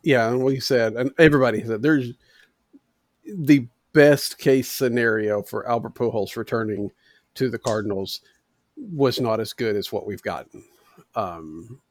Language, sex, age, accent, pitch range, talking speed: English, male, 50-69, American, 115-140 Hz, 140 wpm